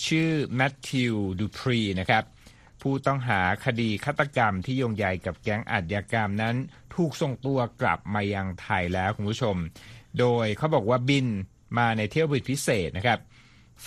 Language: Thai